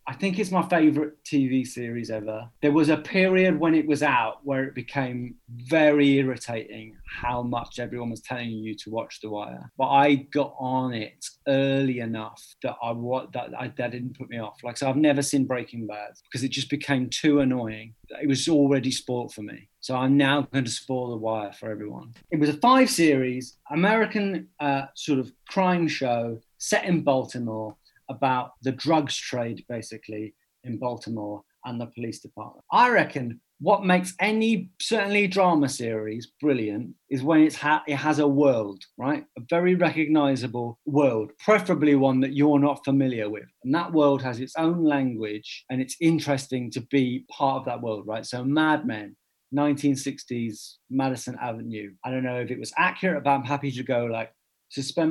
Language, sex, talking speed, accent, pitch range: English, male, 180 wpm, British, 120-145 Hz